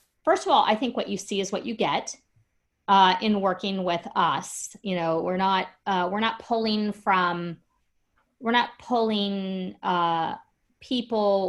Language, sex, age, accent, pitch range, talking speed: English, female, 40-59, American, 165-210 Hz, 160 wpm